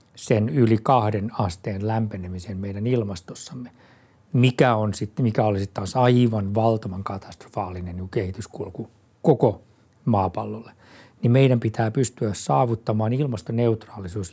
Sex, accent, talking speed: male, native, 105 wpm